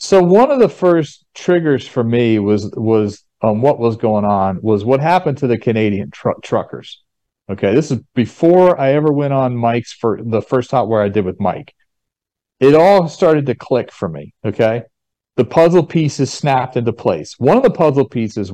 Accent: American